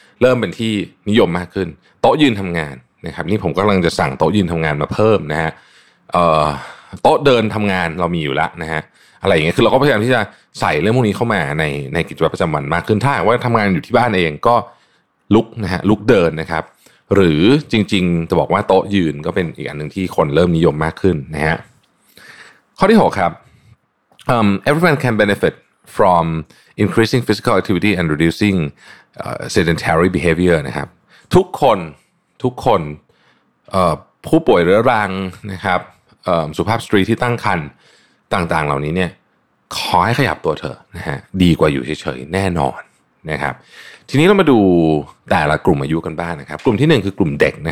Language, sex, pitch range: Thai, male, 80-110 Hz